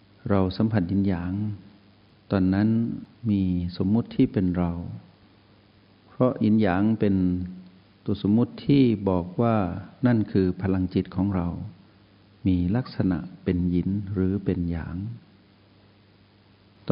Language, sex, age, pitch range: Thai, male, 60-79, 95-110 Hz